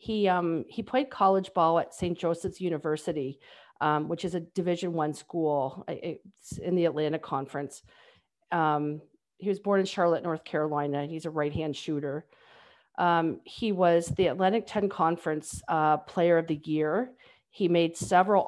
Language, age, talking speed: English, 40-59, 160 wpm